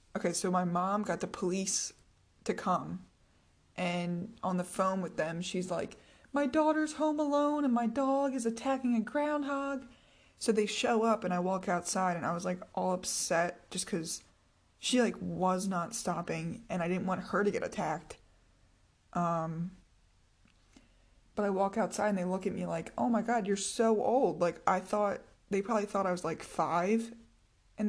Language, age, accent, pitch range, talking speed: English, 20-39, American, 175-215 Hz, 185 wpm